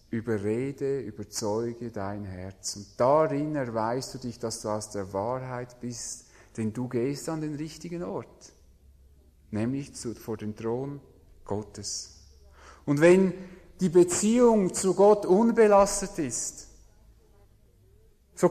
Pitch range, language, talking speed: 100-155 Hz, English, 120 wpm